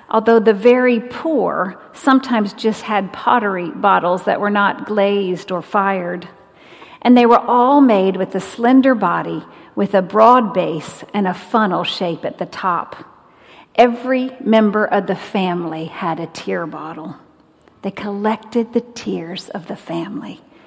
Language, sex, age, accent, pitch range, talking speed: English, female, 50-69, American, 195-235 Hz, 150 wpm